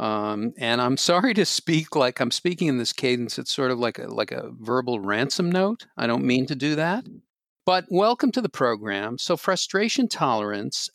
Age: 50-69